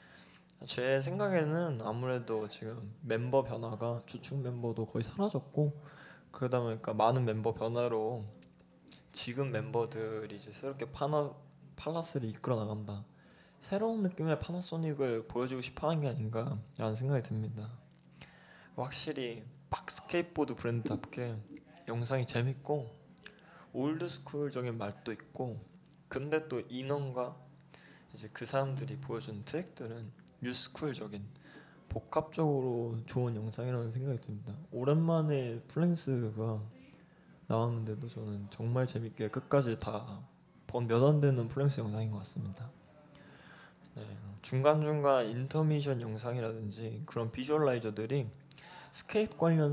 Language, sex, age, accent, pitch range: Korean, male, 20-39, native, 115-145 Hz